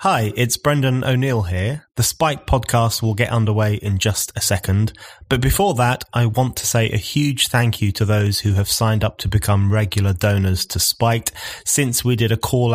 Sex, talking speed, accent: male, 200 wpm, British